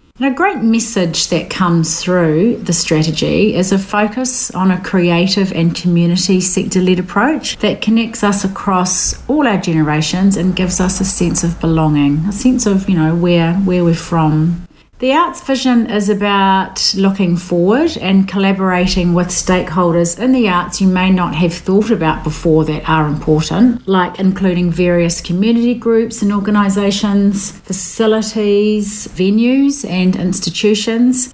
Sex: female